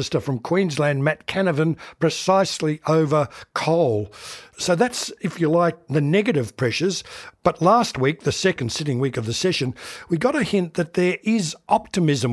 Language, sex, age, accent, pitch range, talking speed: English, male, 60-79, Australian, 140-180 Hz, 160 wpm